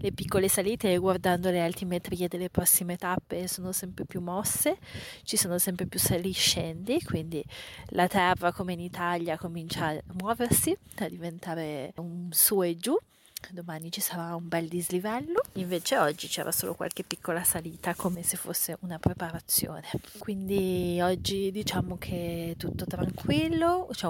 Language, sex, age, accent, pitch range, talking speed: Italian, female, 30-49, native, 175-205 Hz, 150 wpm